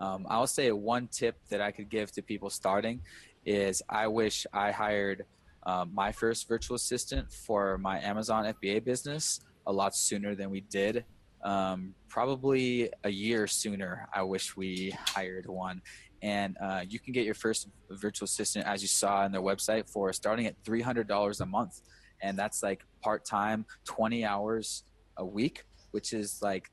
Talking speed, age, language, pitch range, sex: 170 wpm, 20-39, English, 95-110 Hz, male